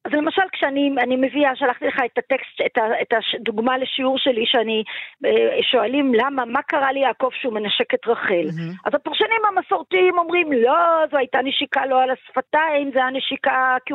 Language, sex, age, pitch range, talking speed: Hebrew, female, 40-59, 255-320 Hz, 160 wpm